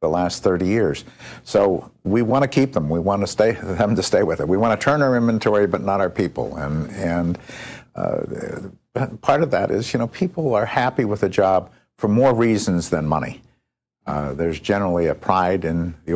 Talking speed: 210 wpm